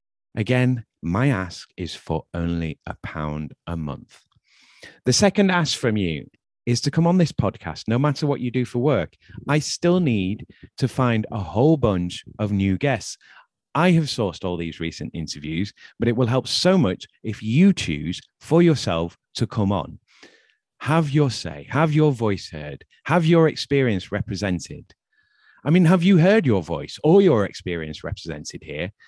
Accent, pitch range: British, 95-150 Hz